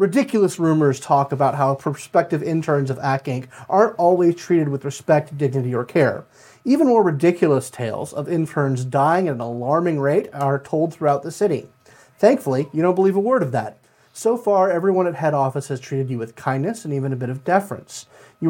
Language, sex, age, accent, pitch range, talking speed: English, male, 30-49, American, 130-175 Hz, 195 wpm